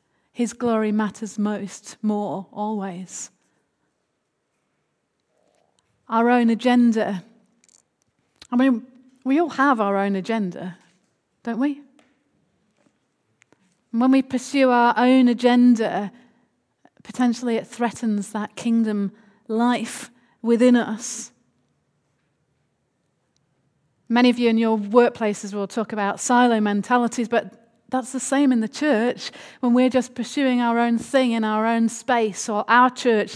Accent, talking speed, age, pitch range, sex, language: British, 115 wpm, 30-49, 220-265 Hz, female, English